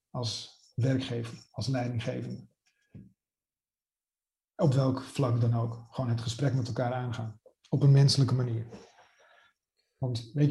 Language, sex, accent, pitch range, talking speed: Dutch, male, Dutch, 125-155 Hz, 120 wpm